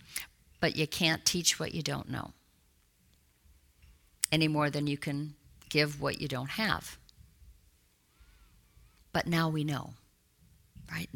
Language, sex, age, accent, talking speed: English, female, 50-69, American, 125 wpm